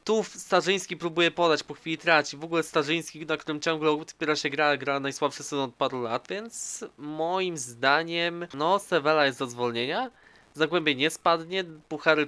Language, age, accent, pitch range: Polish, 20-39, native, 130-165 Hz